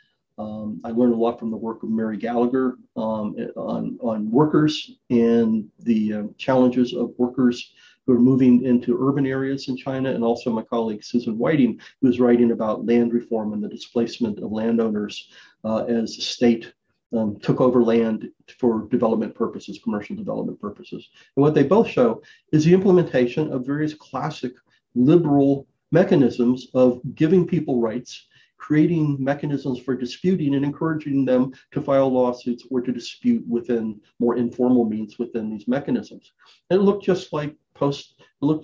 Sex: male